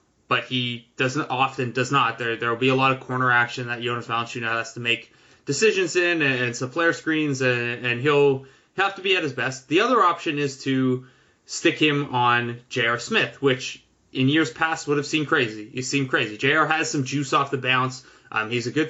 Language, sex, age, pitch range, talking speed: English, male, 20-39, 125-150 Hz, 220 wpm